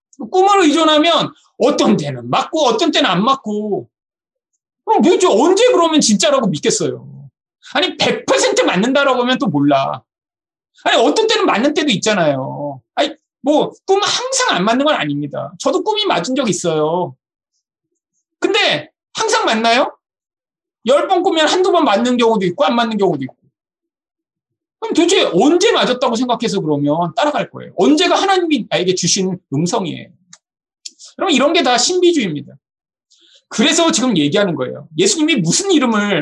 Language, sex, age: Korean, male, 40-59